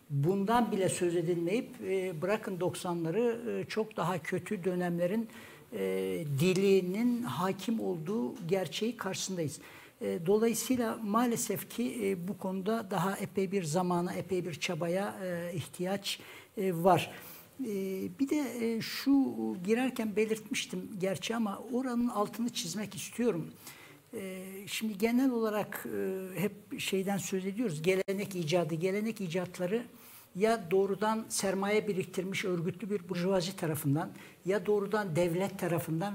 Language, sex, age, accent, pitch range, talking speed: Turkish, male, 60-79, native, 180-215 Hz, 105 wpm